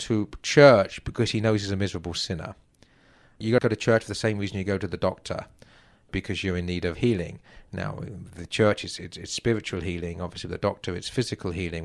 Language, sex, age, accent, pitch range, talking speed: English, male, 40-59, British, 95-120 Hz, 215 wpm